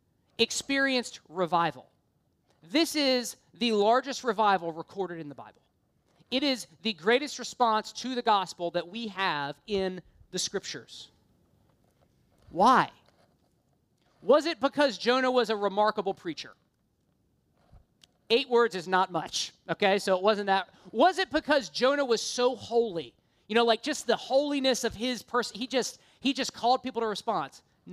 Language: English